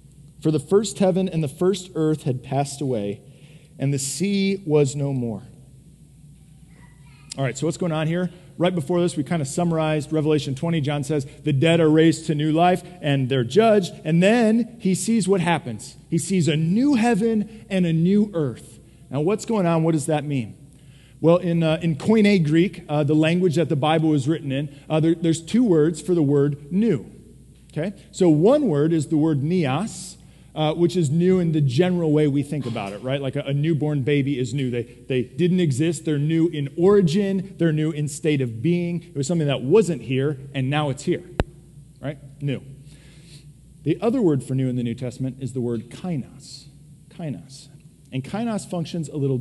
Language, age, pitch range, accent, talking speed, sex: English, 40-59, 140-170 Hz, American, 200 wpm, male